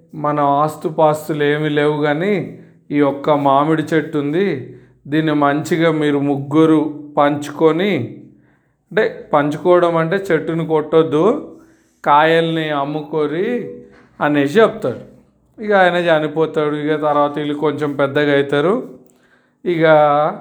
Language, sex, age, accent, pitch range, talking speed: Telugu, male, 40-59, native, 145-175 Hz, 100 wpm